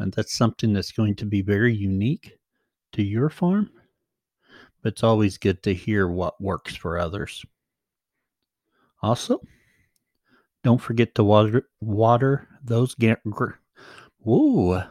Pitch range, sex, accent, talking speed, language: 105-140 Hz, male, American, 120 wpm, English